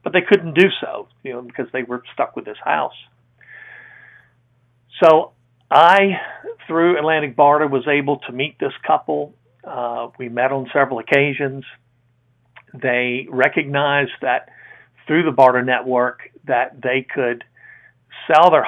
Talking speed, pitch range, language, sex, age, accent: 140 wpm, 125-150 Hz, English, male, 50-69, American